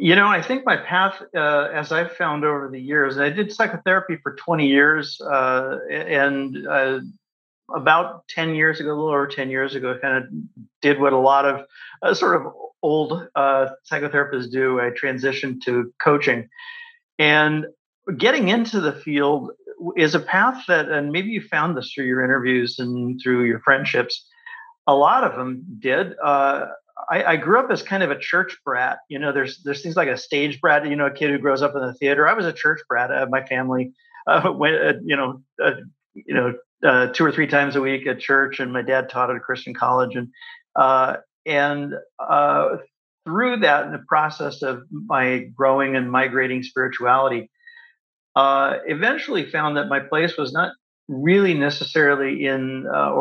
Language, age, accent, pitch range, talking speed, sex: English, 50-69, American, 130-160 Hz, 190 wpm, male